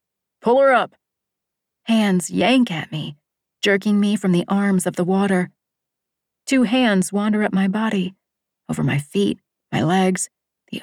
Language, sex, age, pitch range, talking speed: English, female, 40-59, 165-210 Hz, 150 wpm